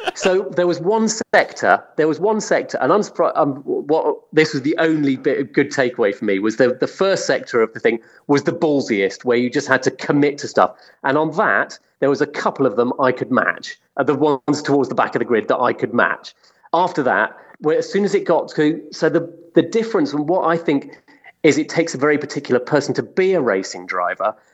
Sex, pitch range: male, 135-185 Hz